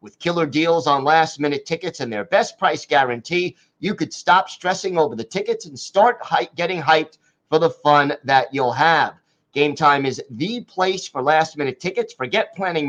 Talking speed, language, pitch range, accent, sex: 175 wpm, English, 145-185 Hz, American, male